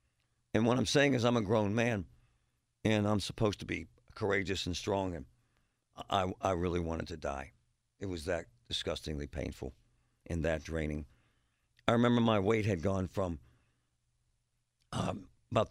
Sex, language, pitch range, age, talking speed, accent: male, English, 85-115 Hz, 60-79, 155 wpm, American